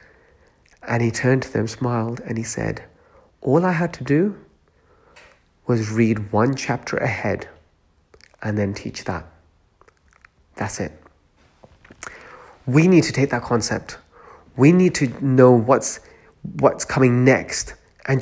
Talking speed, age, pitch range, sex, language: 130 wpm, 30-49, 115-150 Hz, male, English